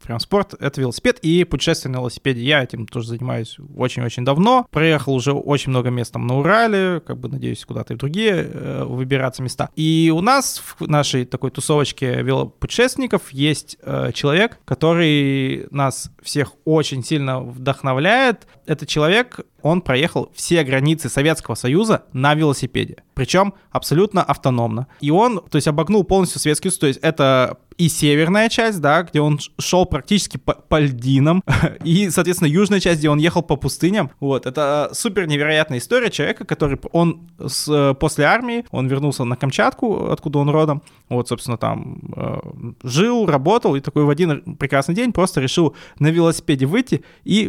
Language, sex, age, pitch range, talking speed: Russian, male, 20-39, 135-170 Hz, 155 wpm